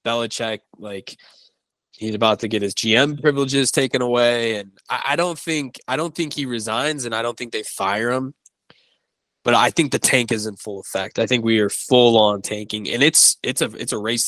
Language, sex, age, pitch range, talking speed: English, male, 20-39, 110-130 Hz, 210 wpm